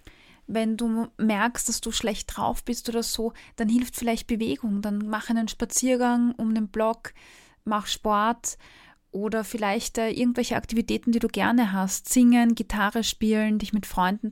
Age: 20-39